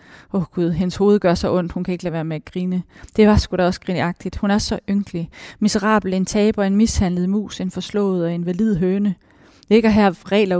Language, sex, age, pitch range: Danish, female, 30-49, 180-205 Hz